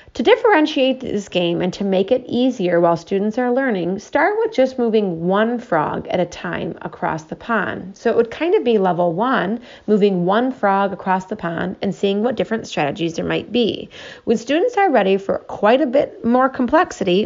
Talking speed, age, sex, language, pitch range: 200 wpm, 30-49, female, English, 185-245 Hz